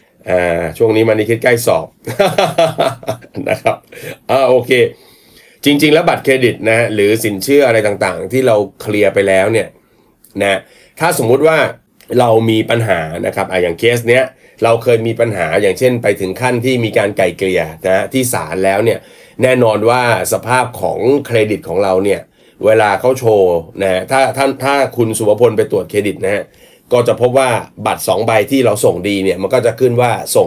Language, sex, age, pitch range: Thai, male, 30-49, 105-130 Hz